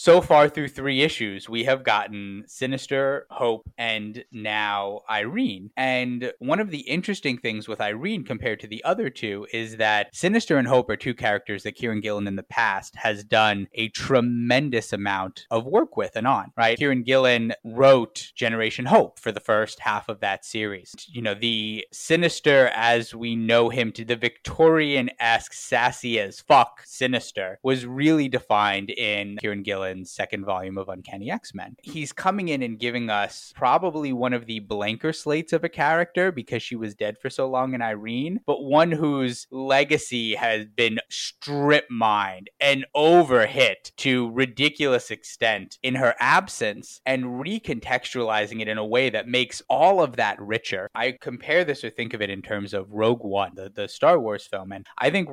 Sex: male